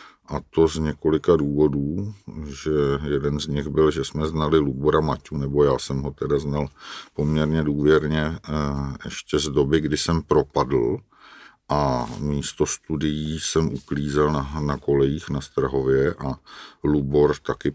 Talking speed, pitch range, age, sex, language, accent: 140 wpm, 70-75 Hz, 50-69, male, Czech, native